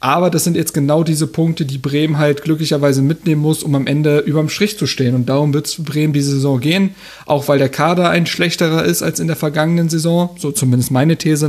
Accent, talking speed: German, 230 wpm